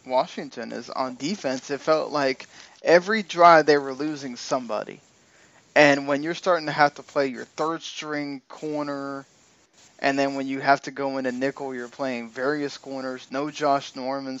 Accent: American